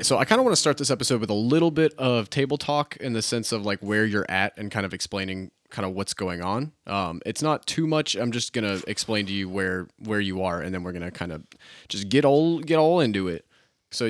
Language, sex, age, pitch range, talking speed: English, male, 20-39, 95-120 Hz, 265 wpm